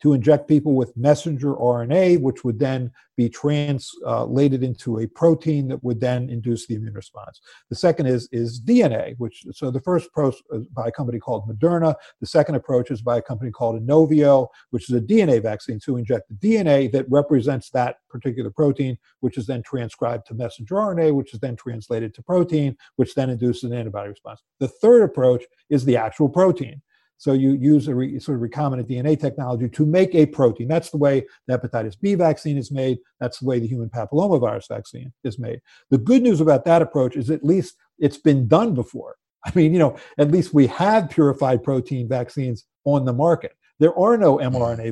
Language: English